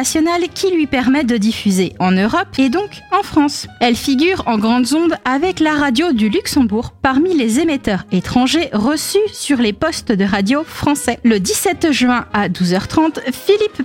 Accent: French